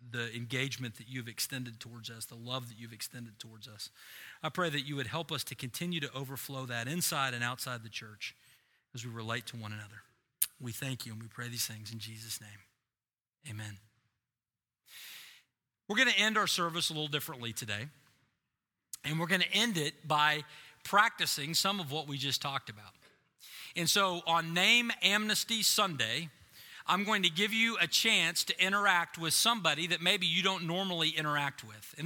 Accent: American